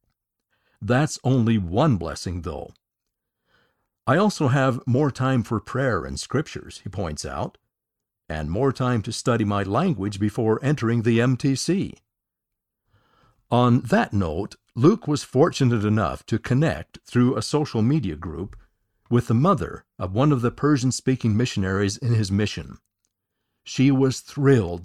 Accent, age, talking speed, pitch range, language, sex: American, 60-79, 140 wpm, 105-135 Hz, English, male